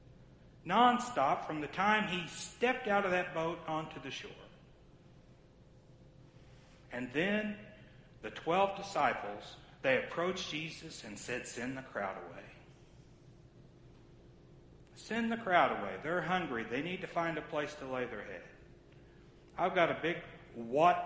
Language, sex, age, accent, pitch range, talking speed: English, male, 60-79, American, 135-205 Hz, 140 wpm